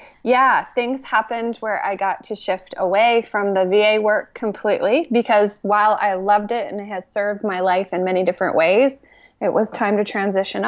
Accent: American